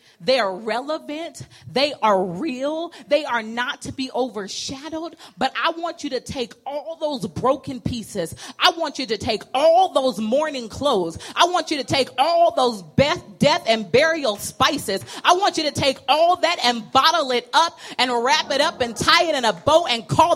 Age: 30-49